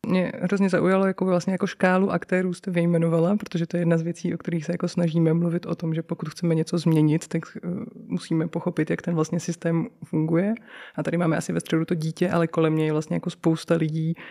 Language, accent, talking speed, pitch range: Czech, native, 220 wpm, 155-185 Hz